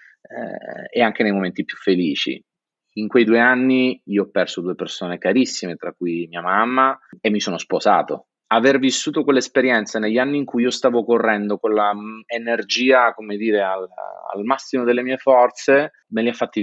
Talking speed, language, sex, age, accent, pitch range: 175 wpm, Italian, male, 30-49, native, 95-115 Hz